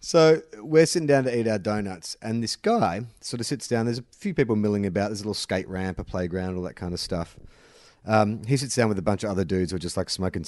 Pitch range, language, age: 95-150 Hz, English, 30-49